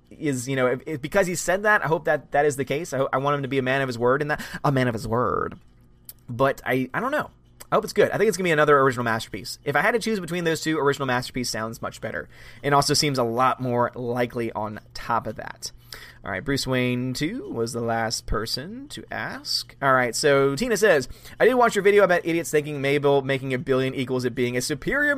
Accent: American